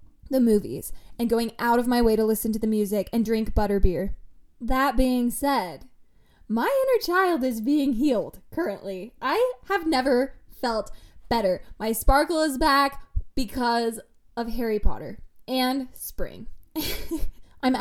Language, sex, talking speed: English, female, 140 wpm